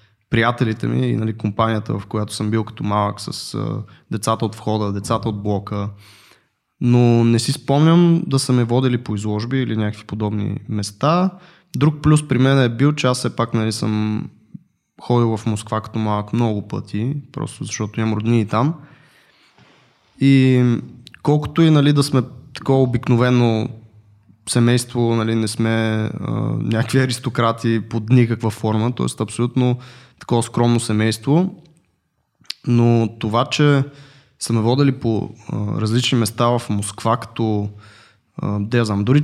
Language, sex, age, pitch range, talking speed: Bulgarian, male, 20-39, 110-130 Hz, 140 wpm